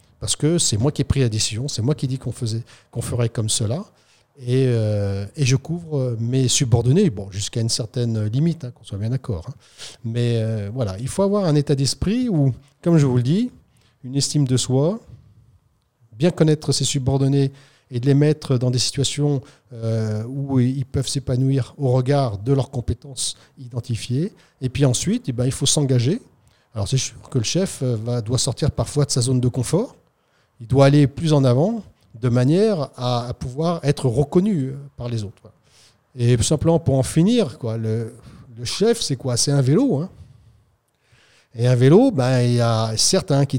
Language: French